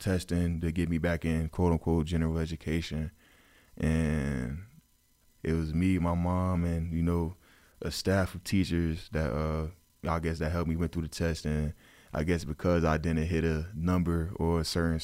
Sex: male